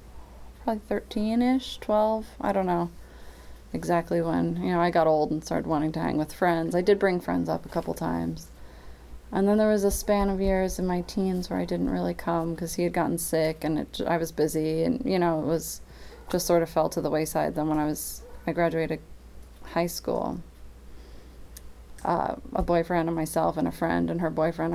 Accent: American